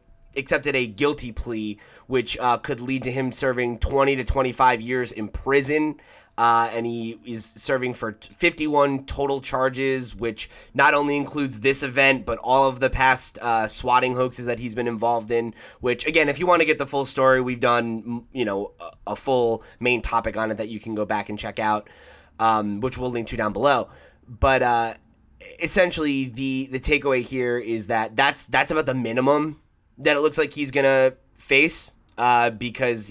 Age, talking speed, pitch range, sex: 20-39, 190 wpm, 110-130 Hz, male